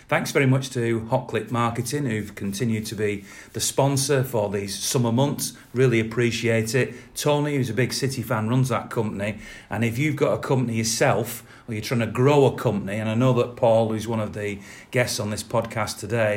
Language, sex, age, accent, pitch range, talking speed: English, male, 40-59, British, 105-125 Hz, 210 wpm